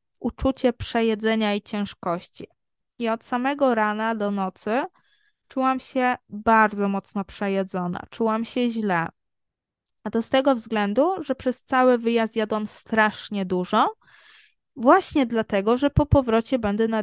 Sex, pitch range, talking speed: female, 205-260 Hz, 130 wpm